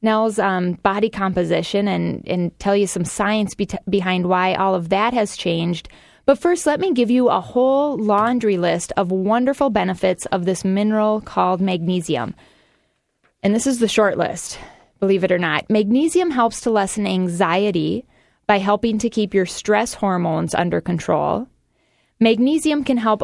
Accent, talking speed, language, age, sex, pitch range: American, 160 wpm, English, 20-39, female, 190-230 Hz